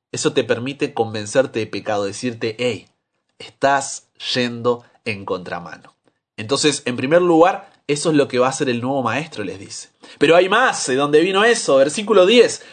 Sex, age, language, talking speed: male, 30-49, Spanish, 180 wpm